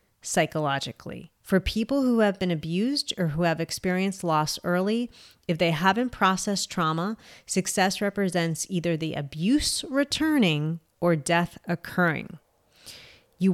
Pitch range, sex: 165-200 Hz, female